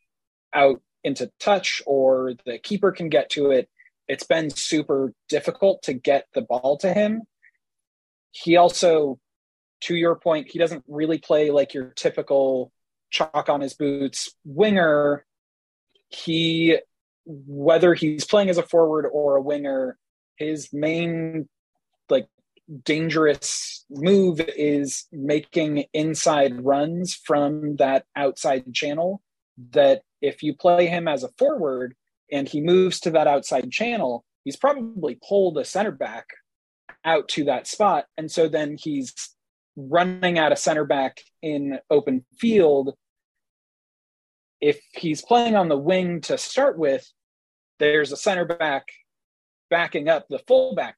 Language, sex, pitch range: English, male, 140-175 Hz